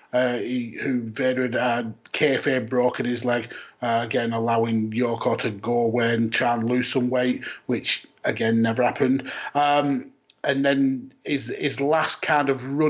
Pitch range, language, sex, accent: 125-140 Hz, English, male, British